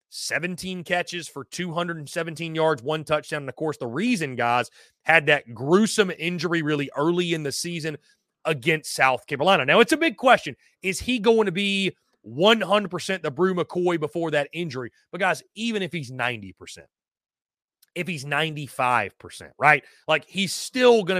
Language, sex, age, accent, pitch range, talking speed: English, male, 30-49, American, 145-185 Hz, 160 wpm